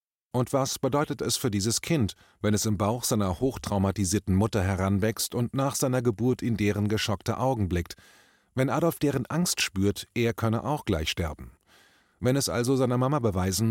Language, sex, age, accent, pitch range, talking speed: German, male, 30-49, German, 100-130 Hz, 175 wpm